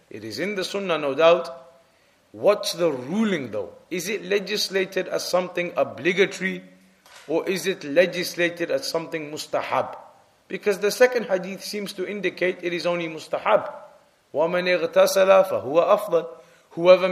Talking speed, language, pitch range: 135 wpm, English, 165-200 Hz